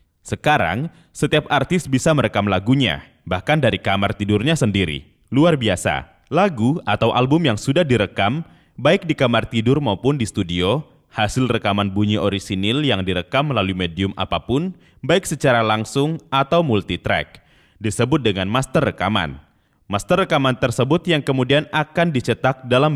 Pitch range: 100-150 Hz